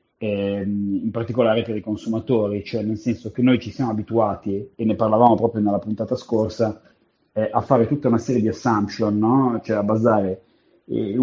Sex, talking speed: male, 175 wpm